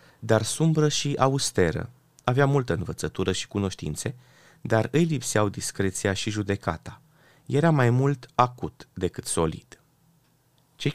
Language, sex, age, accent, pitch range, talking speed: Romanian, male, 30-49, native, 95-145 Hz, 120 wpm